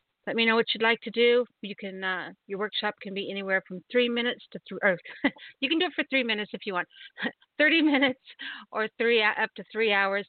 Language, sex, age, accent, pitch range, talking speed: English, female, 50-69, American, 190-225 Hz, 225 wpm